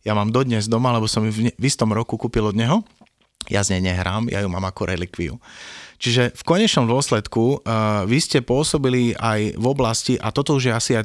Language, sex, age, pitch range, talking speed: Slovak, male, 30-49, 105-125 Hz, 215 wpm